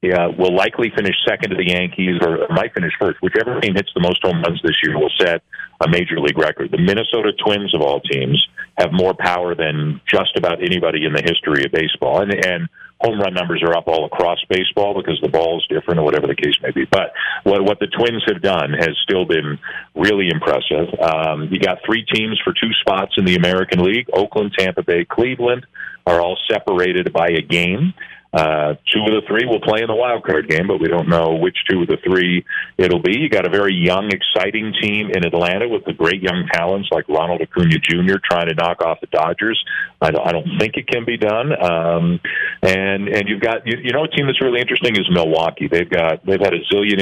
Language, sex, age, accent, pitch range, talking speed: English, male, 40-59, American, 85-100 Hz, 220 wpm